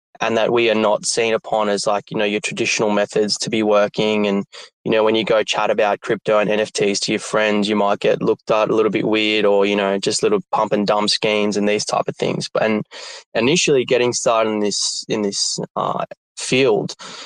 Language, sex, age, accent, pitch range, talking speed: English, male, 20-39, Australian, 105-115 Hz, 225 wpm